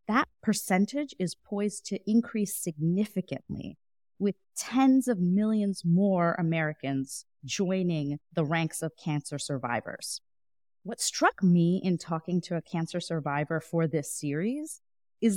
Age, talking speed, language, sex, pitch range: 30-49, 125 wpm, English, female, 160-215 Hz